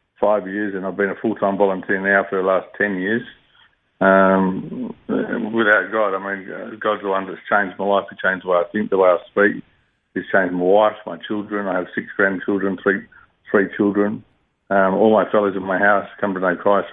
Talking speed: 215 wpm